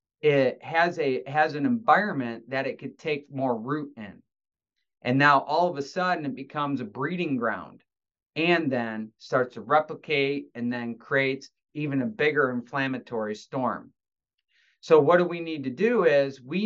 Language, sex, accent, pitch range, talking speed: English, male, American, 125-175 Hz, 165 wpm